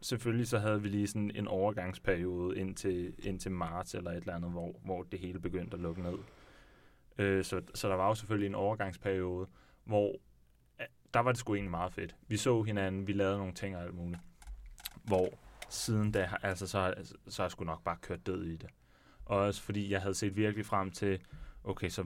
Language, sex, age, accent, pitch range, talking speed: Danish, male, 30-49, native, 90-105 Hz, 210 wpm